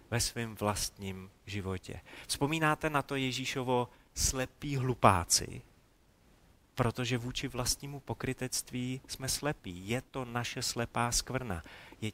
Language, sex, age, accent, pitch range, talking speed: Czech, male, 30-49, native, 105-150 Hz, 110 wpm